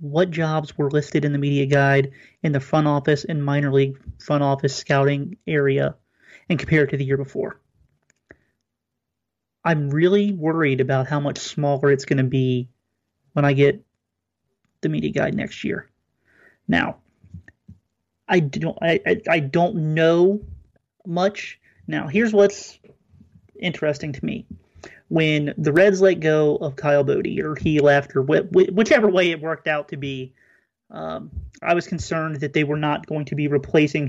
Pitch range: 140-165 Hz